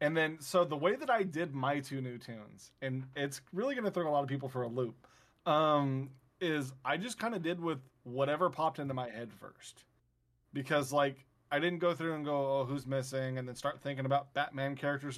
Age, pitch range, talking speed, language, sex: 20-39, 130-150 Hz, 225 wpm, English, male